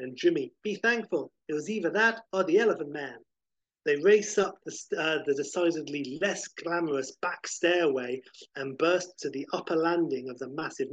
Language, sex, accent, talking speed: English, male, British, 175 wpm